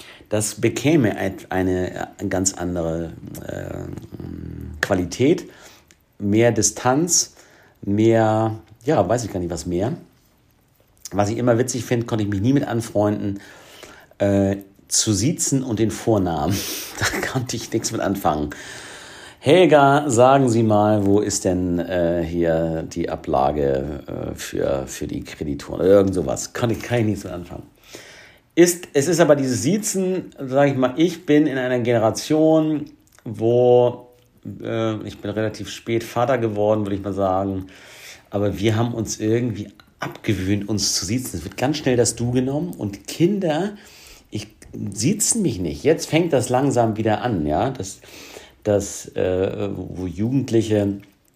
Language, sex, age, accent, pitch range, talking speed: German, male, 50-69, German, 100-125 Hz, 145 wpm